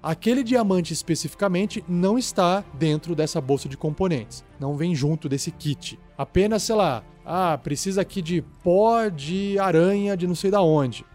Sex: male